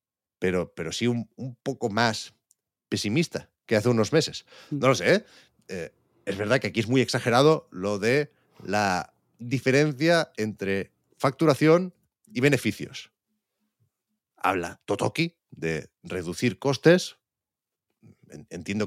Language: Spanish